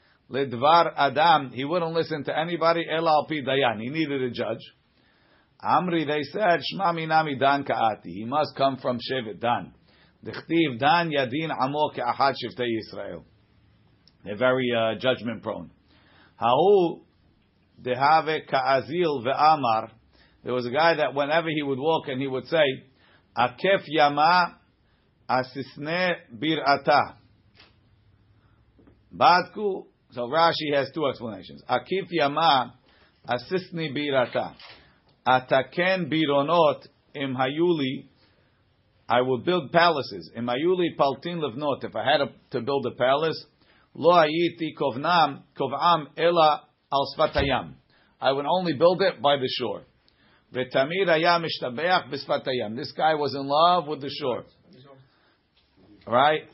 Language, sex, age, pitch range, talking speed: English, male, 50-69, 125-160 Hz, 125 wpm